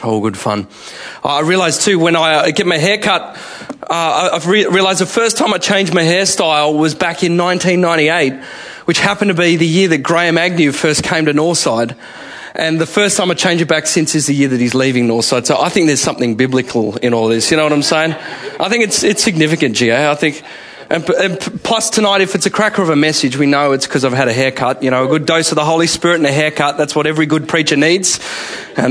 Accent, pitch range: Australian, 135-175 Hz